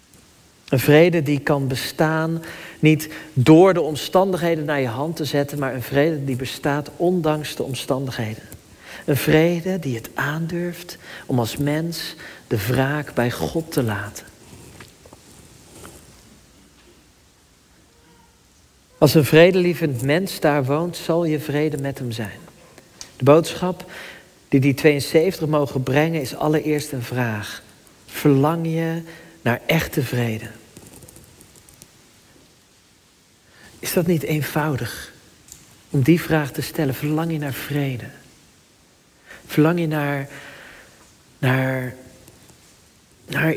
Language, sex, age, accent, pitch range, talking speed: Dutch, male, 50-69, Dutch, 130-160 Hz, 110 wpm